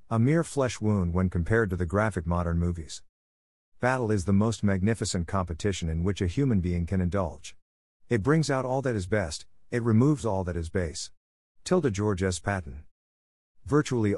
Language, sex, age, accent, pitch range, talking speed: English, male, 50-69, American, 85-115 Hz, 180 wpm